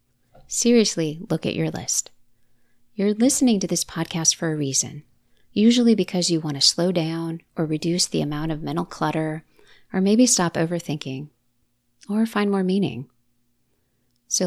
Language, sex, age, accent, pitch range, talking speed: English, female, 30-49, American, 135-190 Hz, 150 wpm